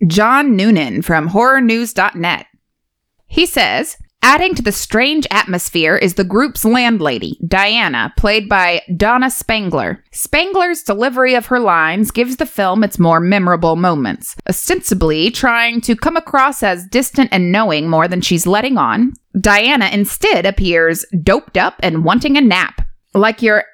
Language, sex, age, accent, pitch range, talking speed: English, female, 20-39, American, 180-255 Hz, 145 wpm